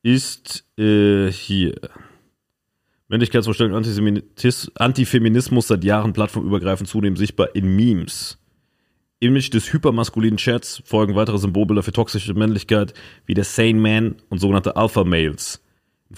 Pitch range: 95-120 Hz